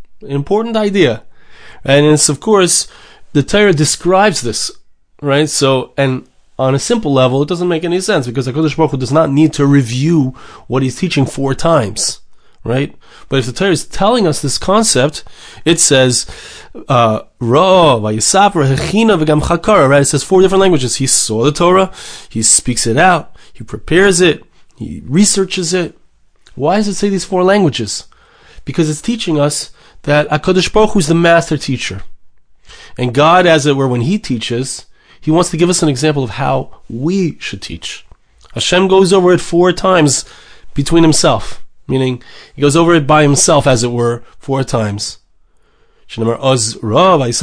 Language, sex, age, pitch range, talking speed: English, male, 30-49, 125-180 Hz, 160 wpm